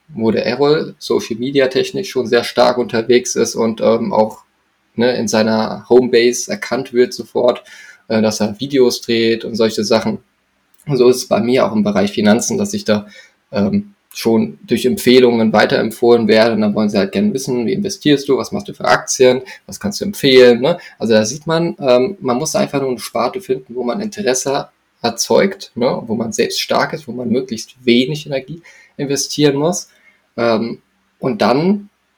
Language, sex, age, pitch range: German, male, 20-39, 120-165 Hz